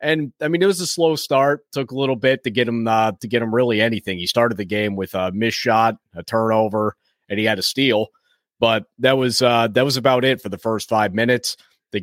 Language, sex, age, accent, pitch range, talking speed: English, male, 30-49, American, 105-135 Hz, 250 wpm